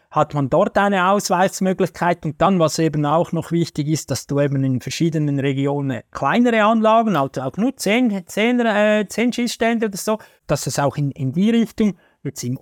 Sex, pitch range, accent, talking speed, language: male, 145-180 Hz, Austrian, 190 wpm, German